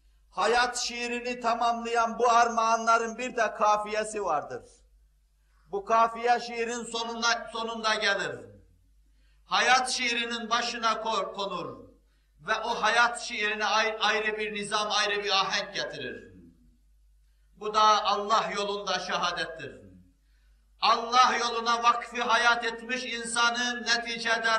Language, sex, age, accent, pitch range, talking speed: Turkish, male, 50-69, native, 205-240 Hz, 105 wpm